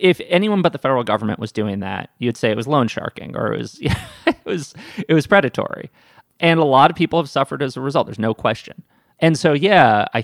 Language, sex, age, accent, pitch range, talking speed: English, male, 30-49, American, 110-150 Hz, 240 wpm